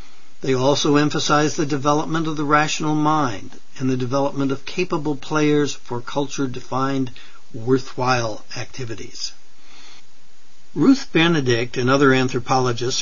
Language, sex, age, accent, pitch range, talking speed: English, male, 60-79, American, 125-150 Hz, 110 wpm